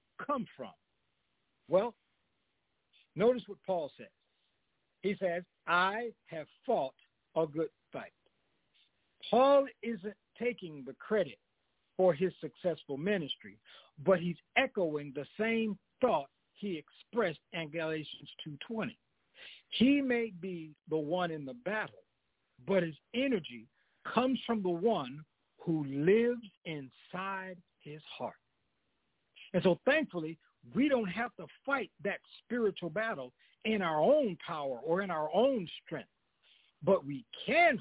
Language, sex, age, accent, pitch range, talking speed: English, male, 60-79, American, 155-225 Hz, 125 wpm